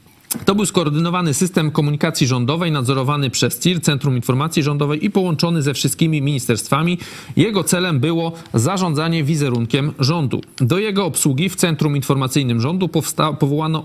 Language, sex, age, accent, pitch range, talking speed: Polish, male, 40-59, native, 130-165 Hz, 135 wpm